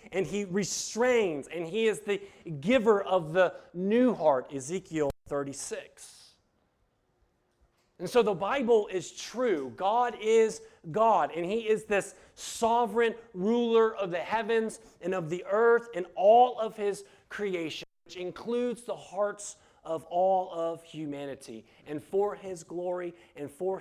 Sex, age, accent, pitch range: male, 30-49, American, 160-225 Hz